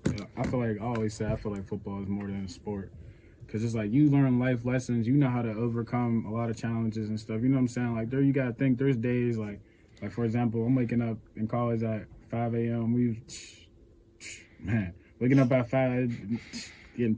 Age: 20-39